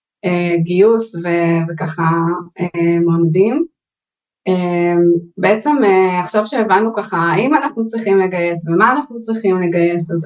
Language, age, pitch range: Hebrew, 20-39, 180-225 Hz